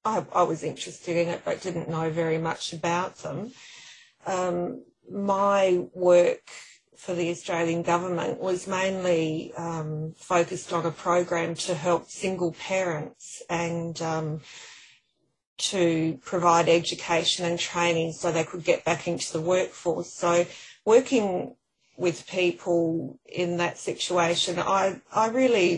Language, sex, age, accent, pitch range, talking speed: English, female, 30-49, Australian, 170-190 Hz, 130 wpm